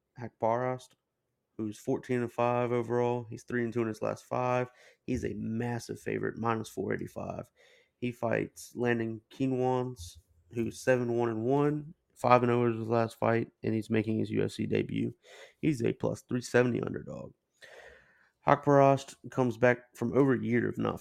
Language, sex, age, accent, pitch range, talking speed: English, male, 30-49, American, 110-125 Hz, 140 wpm